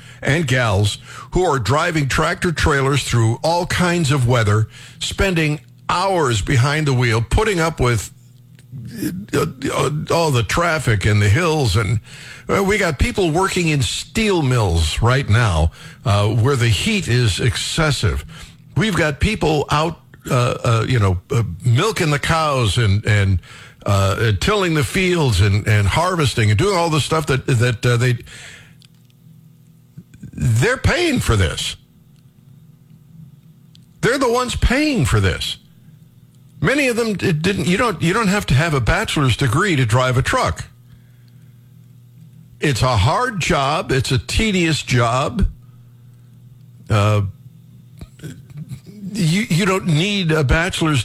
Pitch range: 120-155 Hz